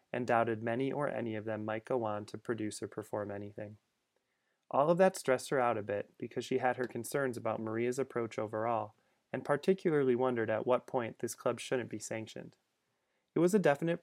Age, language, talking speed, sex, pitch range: 30-49, English, 200 wpm, male, 110-130 Hz